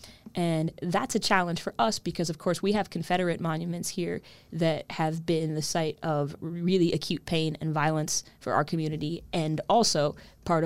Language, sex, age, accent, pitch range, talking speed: English, female, 20-39, American, 150-180 Hz, 175 wpm